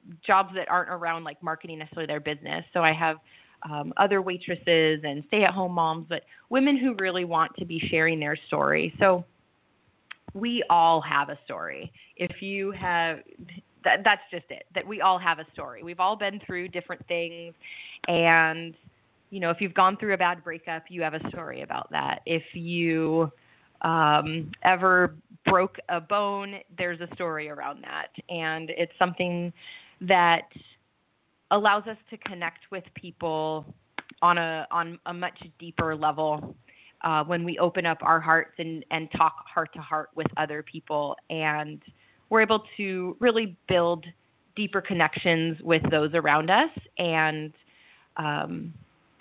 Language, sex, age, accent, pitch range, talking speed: English, female, 20-39, American, 160-185 Hz, 155 wpm